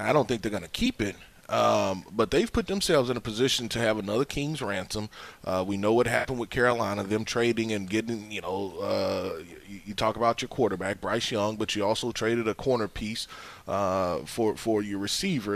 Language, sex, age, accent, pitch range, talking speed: English, male, 30-49, American, 100-120 Hz, 210 wpm